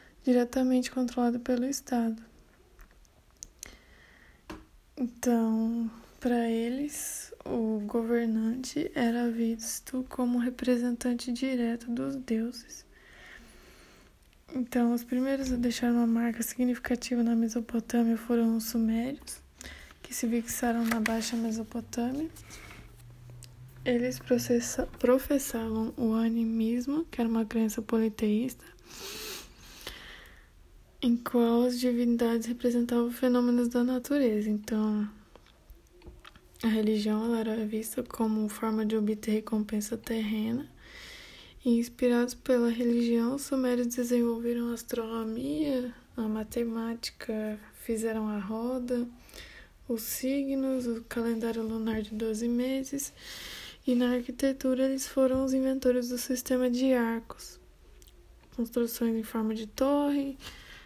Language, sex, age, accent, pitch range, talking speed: Portuguese, female, 20-39, Brazilian, 225-250 Hz, 100 wpm